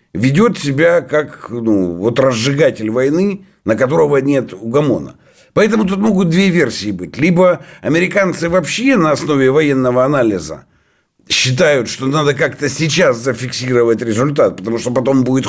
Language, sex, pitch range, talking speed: Russian, male, 125-170 Hz, 135 wpm